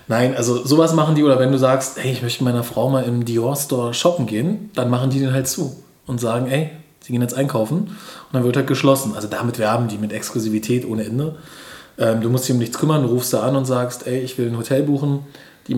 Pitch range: 120-150 Hz